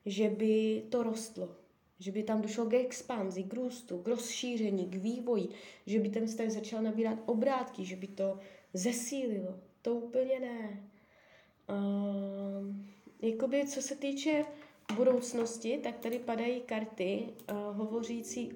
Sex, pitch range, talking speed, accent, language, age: female, 200-245 Hz, 130 wpm, native, Czech, 20-39